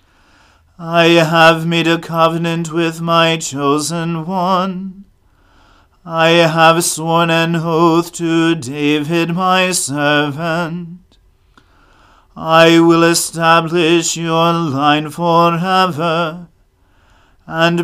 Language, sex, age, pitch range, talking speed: English, male, 40-59, 160-170 Hz, 85 wpm